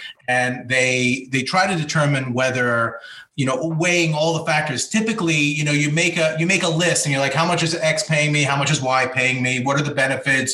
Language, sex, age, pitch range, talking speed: English, male, 30-49, 135-165 Hz, 240 wpm